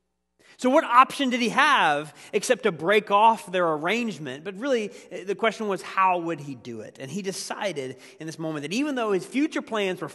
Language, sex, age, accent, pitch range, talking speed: English, male, 30-49, American, 145-225 Hz, 205 wpm